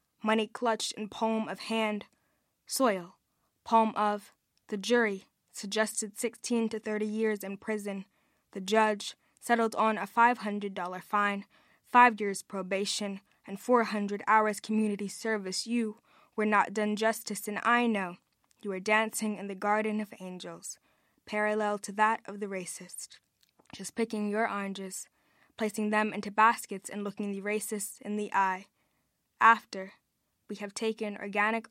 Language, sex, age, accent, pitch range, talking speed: English, female, 20-39, American, 200-215 Hz, 140 wpm